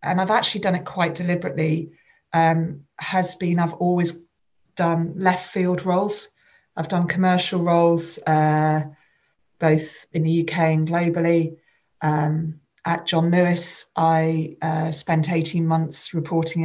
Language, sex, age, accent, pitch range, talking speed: English, female, 30-49, British, 160-180 Hz, 135 wpm